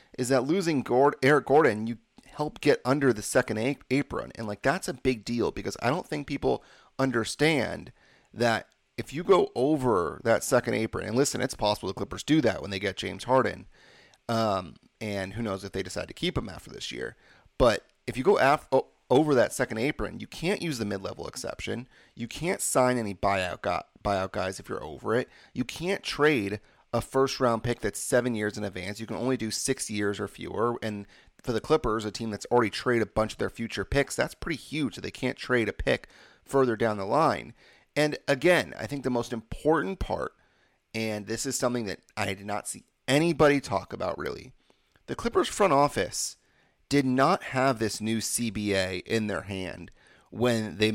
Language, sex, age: English, male, 30-49